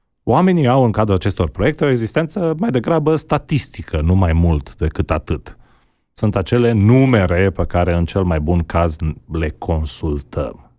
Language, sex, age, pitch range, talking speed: Romanian, male, 30-49, 80-110 Hz, 155 wpm